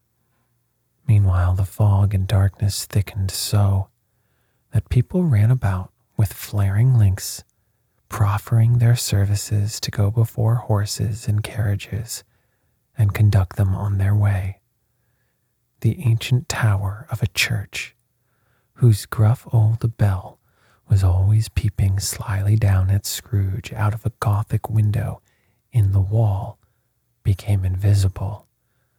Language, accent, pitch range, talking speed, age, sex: English, American, 100-115 Hz, 115 wpm, 40-59, male